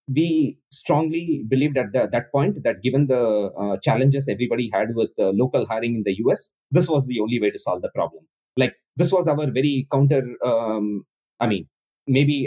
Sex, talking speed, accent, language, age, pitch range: male, 190 wpm, Indian, English, 30-49, 125-145 Hz